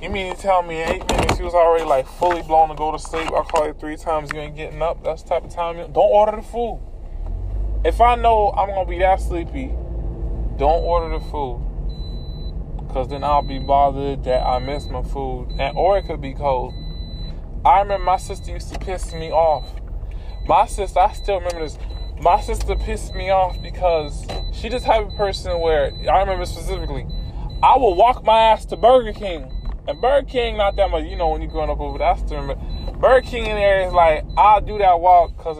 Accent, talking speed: American, 220 wpm